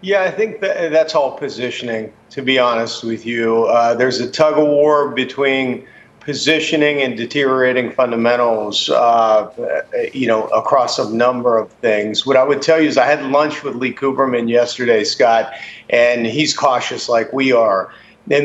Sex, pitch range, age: male, 120-150 Hz, 50-69